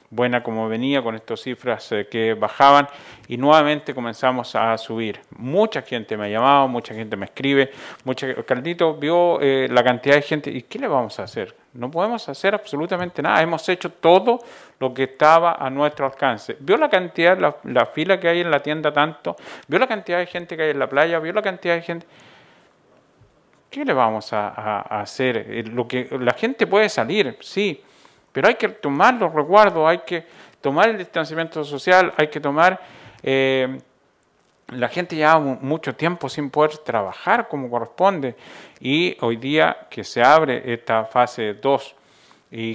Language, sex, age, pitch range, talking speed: Spanish, male, 40-59, 120-165 Hz, 180 wpm